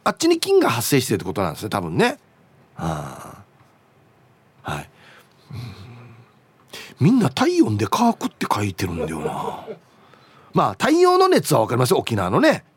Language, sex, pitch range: Japanese, male, 140-225 Hz